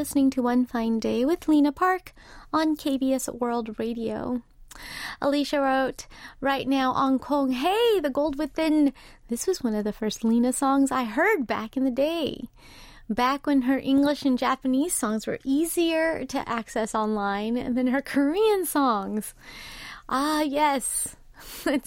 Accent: American